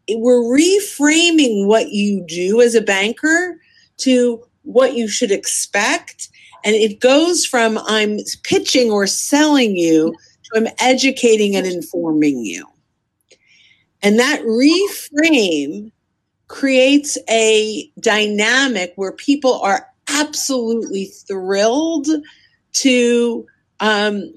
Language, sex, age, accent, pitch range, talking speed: English, female, 50-69, American, 200-275 Hz, 100 wpm